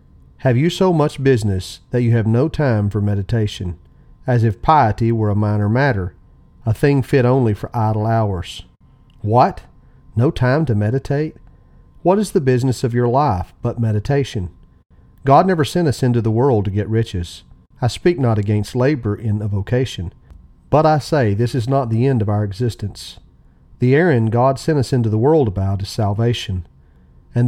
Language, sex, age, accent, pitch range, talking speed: English, male, 40-59, American, 105-135 Hz, 175 wpm